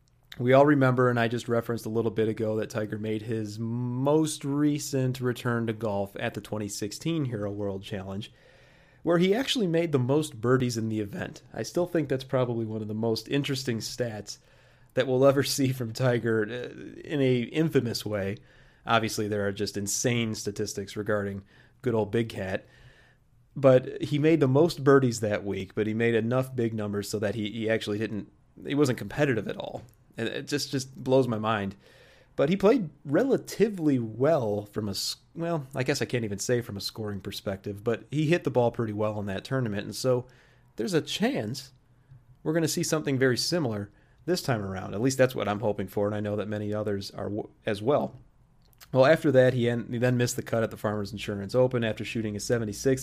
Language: English